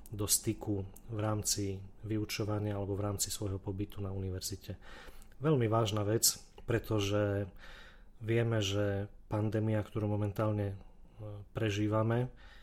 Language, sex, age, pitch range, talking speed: Slovak, male, 30-49, 100-110 Hz, 105 wpm